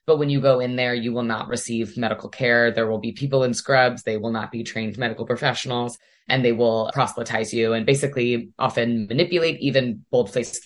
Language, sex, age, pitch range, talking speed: English, female, 20-39, 115-150 Hz, 205 wpm